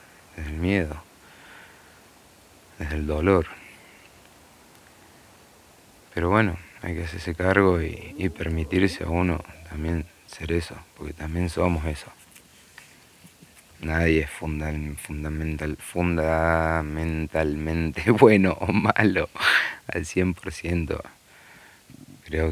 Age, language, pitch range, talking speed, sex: 30-49, English, 75-90 Hz, 100 wpm, male